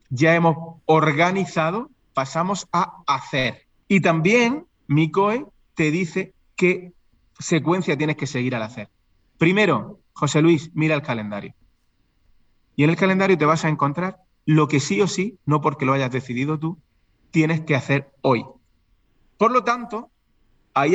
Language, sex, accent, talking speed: Spanish, male, Spanish, 145 wpm